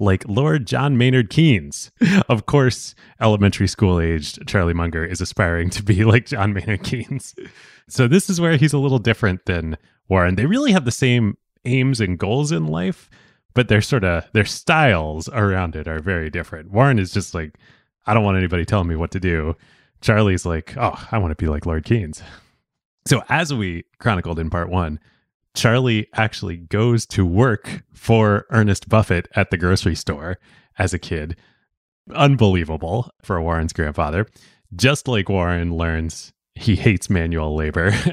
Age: 30-49